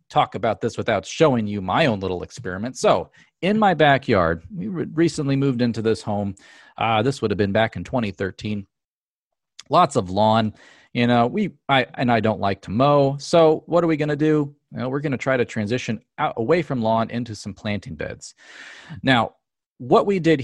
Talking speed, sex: 185 wpm, male